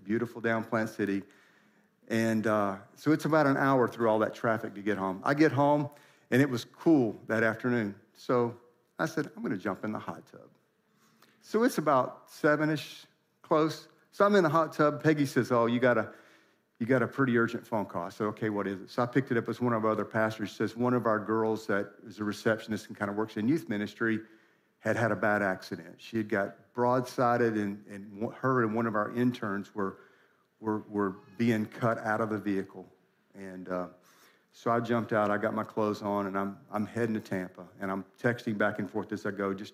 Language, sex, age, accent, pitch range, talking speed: English, male, 50-69, American, 100-120 Hz, 225 wpm